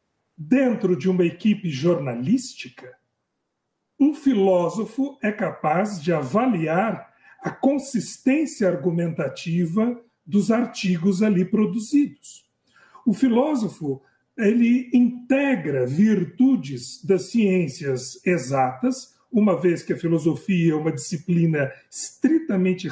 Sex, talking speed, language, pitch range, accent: male, 90 wpm, Portuguese, 160-235 Hz, Brazilian